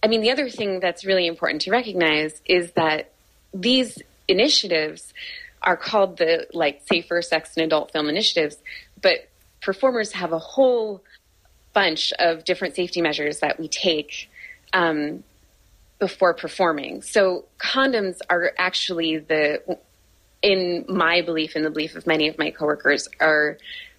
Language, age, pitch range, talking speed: English, 20-39, 155-185 Hz, 145 wpm